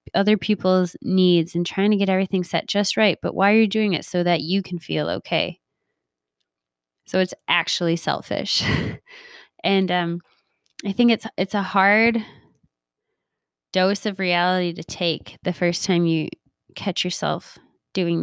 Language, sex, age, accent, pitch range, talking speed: English, female, 20-39, American, 175-215 Hz, 155 wpm